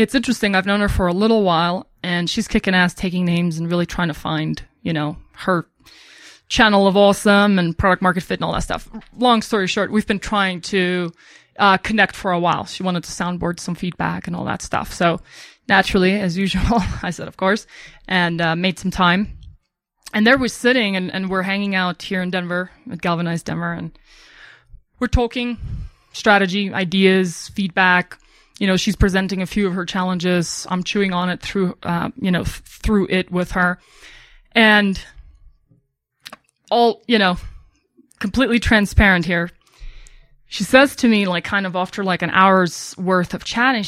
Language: English